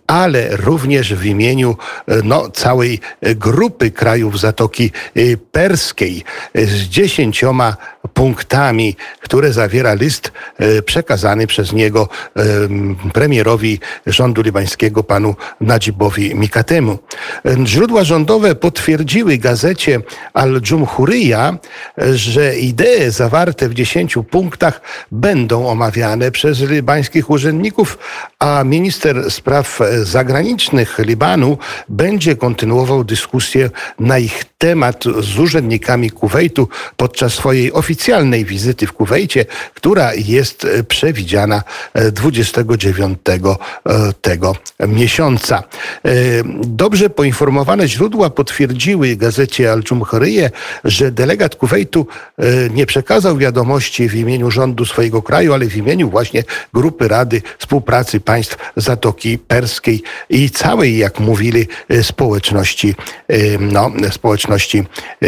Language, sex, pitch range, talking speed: Polish, male, 110-140 Hz, 90 wpm